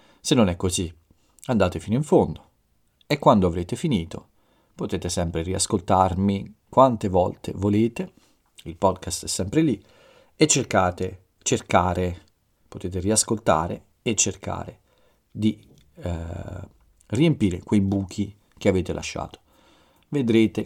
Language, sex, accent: Italian, male, native